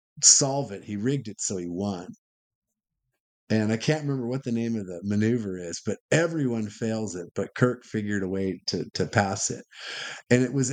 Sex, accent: male, American